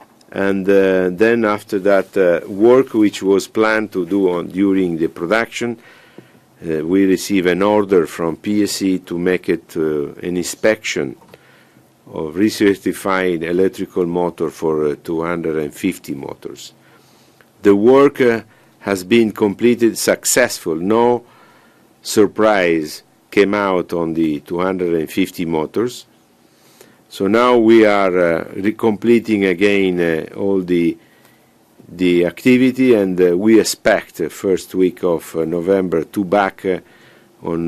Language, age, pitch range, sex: Italian, 50-69, 85-110 Hz, male